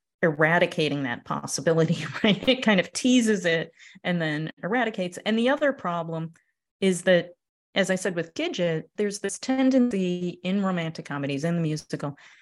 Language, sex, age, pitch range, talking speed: English, female, 30-49, 155-205 Hz, 155 wpm